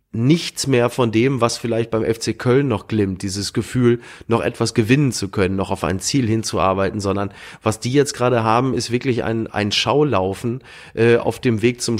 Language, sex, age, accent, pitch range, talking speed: German, male, 30-49, German, 110-140 Hz, 195 wpm